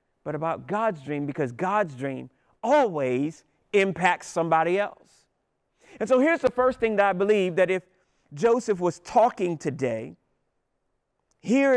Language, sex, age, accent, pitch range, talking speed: English, male, 40-59, American, 195-250 Hz, 140 wpm